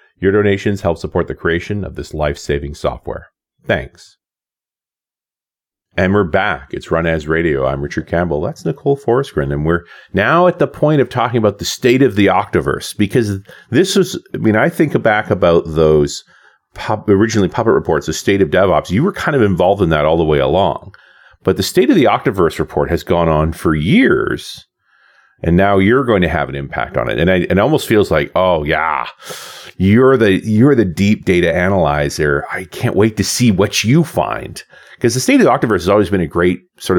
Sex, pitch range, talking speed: male, 80-110 Hz, 200 wpm